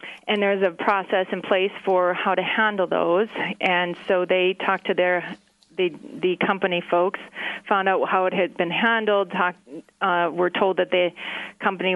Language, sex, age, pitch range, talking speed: English, female, 40-59, 175-195 Hz, 175 wpm